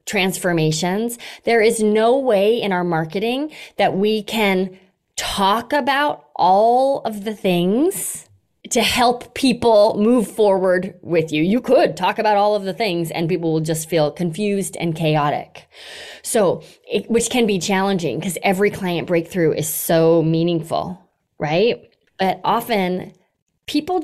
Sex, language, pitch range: female, English, 165-215 Hz